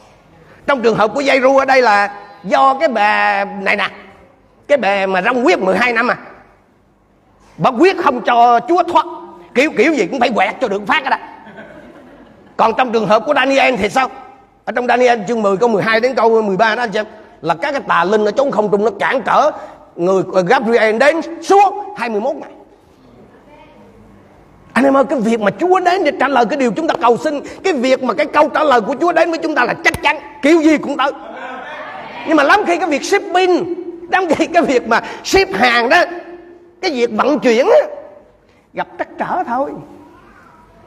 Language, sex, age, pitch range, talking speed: Vietnamese, male, 30-49, 215-300 Hz, 200 wpm